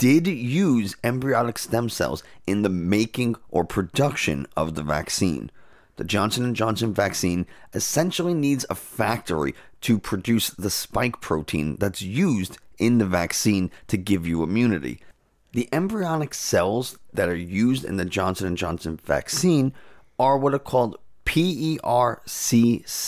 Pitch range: 90-125 Hz